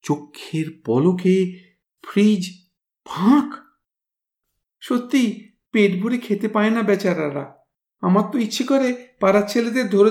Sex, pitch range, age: male, 180-245 Hz, 50-69